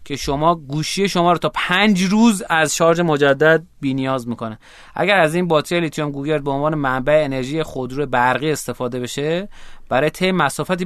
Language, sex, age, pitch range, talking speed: Persian, male, 30-49, 130-165 Hz, 170 wpm